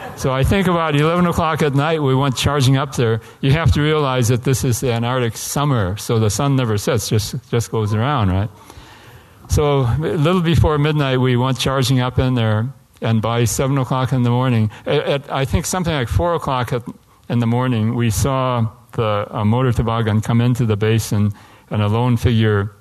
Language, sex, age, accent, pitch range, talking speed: English, male, 60-79, American, 110-130 Hz, 195 wpm